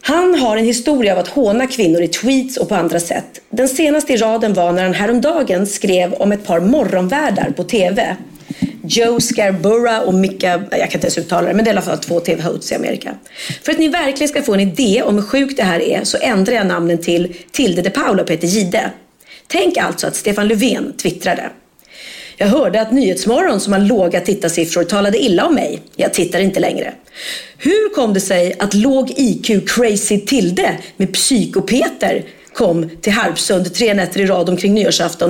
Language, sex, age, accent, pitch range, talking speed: Swedish, female, 40-59, native, 185-265 Hz, 195 wpm